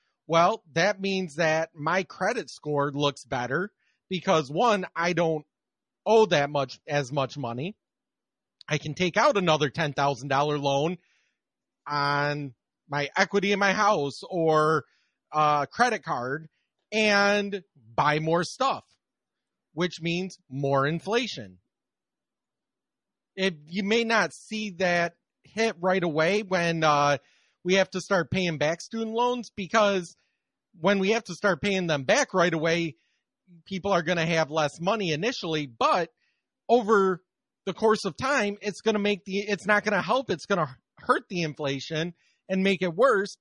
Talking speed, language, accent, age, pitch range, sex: 150 wpm, English, American, 30-49, 155-200 Hz, male